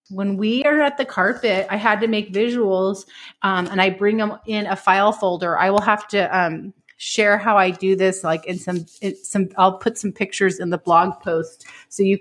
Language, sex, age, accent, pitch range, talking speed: English, female, 30-49, American, 190-245 Hz, 220 wpm